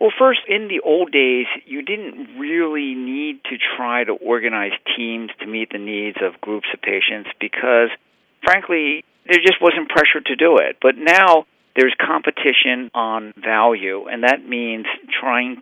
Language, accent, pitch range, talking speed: English, American, 115-165 Hz, 160 wpm